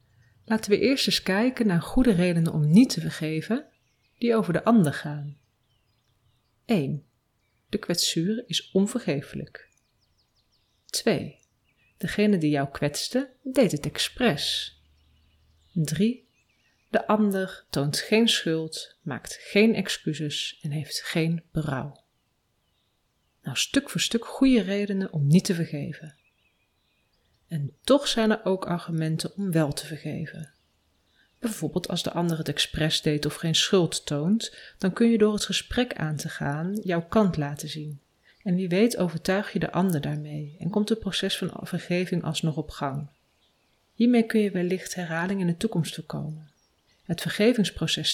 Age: 30-49